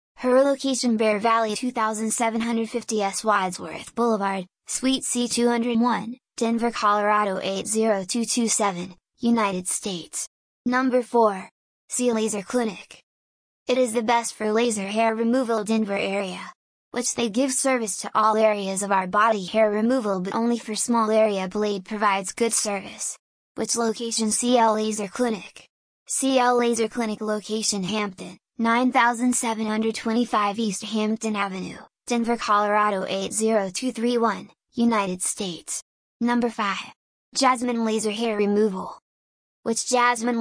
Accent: American